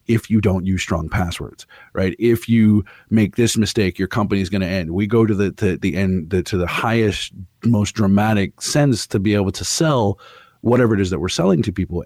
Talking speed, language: 215 wpm, English